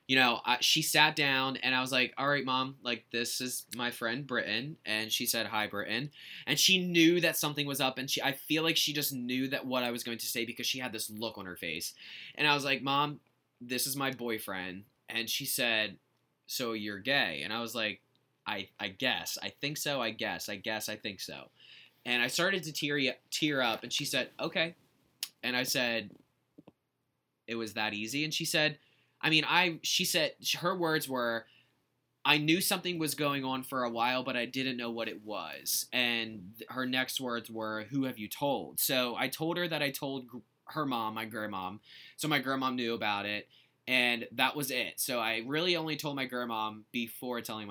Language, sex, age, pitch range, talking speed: English, male, 20-39, 110-140 Hz, 210 wpm